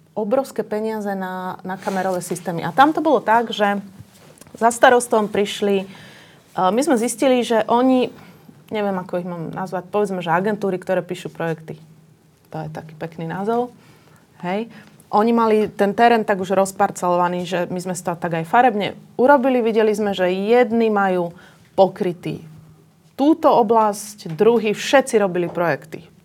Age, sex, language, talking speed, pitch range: 30-49, female, Slovak, 150 wpm, 170-215 Hz